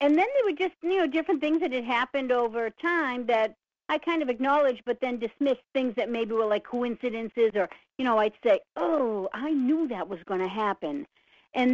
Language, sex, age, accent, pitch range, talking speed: English, female, 60-79, American, 200-245 Hz, 215 wpm